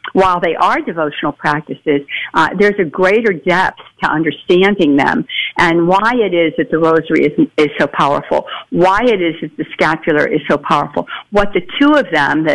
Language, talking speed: English, 185 wpm